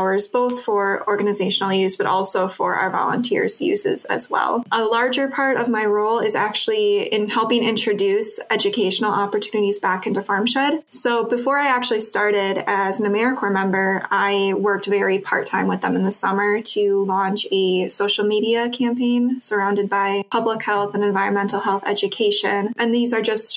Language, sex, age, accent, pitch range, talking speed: English, female, 20-39, American, 200-225 Hz, 165 wpm